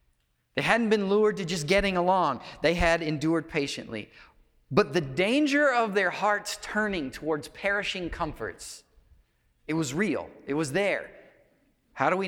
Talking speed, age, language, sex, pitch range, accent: 150 wpm, 40-59, English, male, 120-200 Hz, American